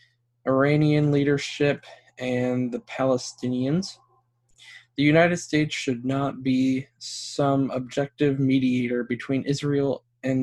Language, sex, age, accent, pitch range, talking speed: English, male, 20-39, American, 120-145 Hz, 100 wpm